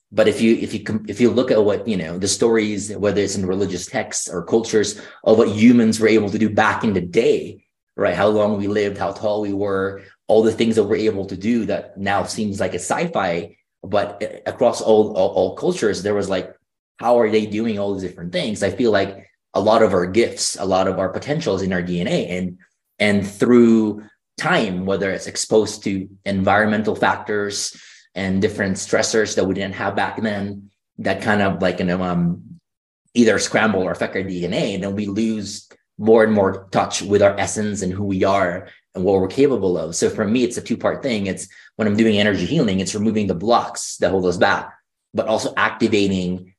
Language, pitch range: English, 95-110 Hz